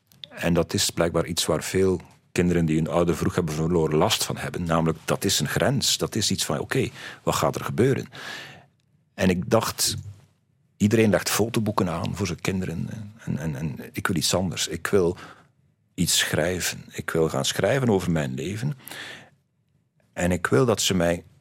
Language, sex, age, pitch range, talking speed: Dutch, male, 50-69, 85-125 Hz, 180 wpm